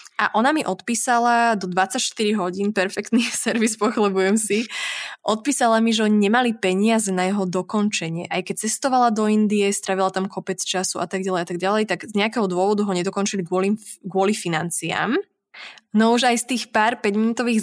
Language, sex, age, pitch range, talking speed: Slovak, female, 20-39, 185-230 Hz, 165 wpm